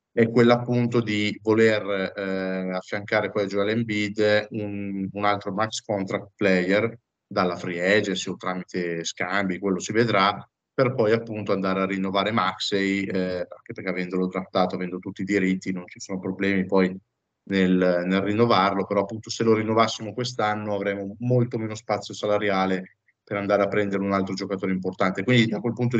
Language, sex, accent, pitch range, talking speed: Italian, male, native, 100-115 Hz, 170 wpm